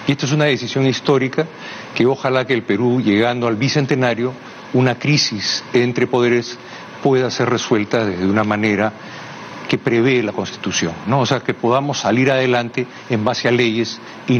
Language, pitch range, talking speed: Spanish, 110-150 Hz, 165 wpm